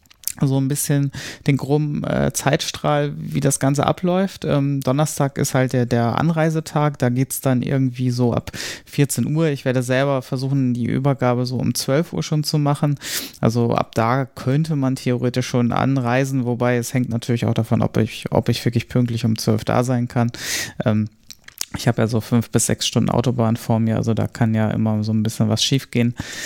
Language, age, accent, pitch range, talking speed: German, 20-39, German, 110-135 Hz, 200 wpm